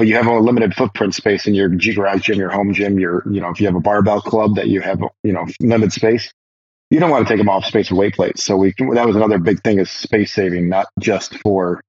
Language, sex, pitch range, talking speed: English, male, 95-115 Hz, 275 wpm